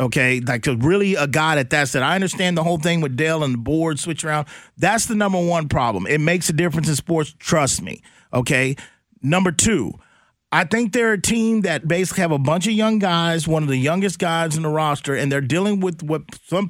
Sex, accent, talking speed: male, American, 225 wpm